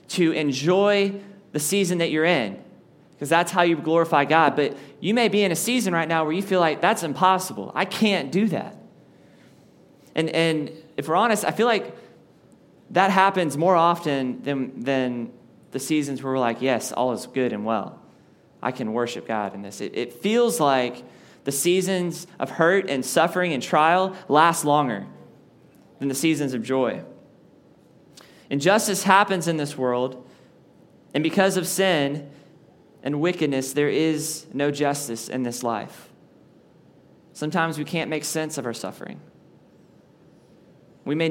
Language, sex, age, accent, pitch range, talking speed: English, male, 20-39, American, 140-170 Hz, 160 wpm